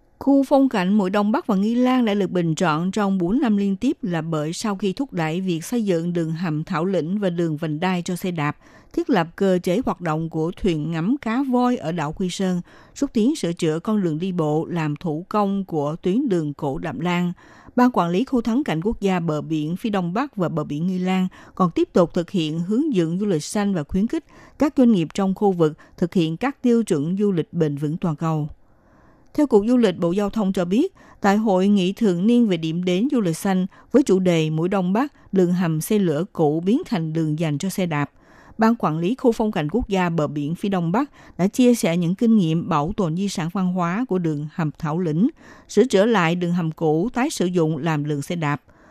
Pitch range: 165-215 Hz